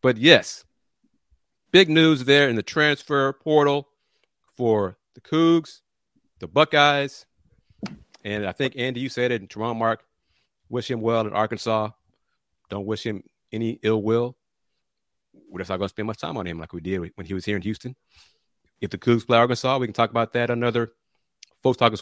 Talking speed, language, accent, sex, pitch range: 185 wpm, English, American, male, 105-130 Hz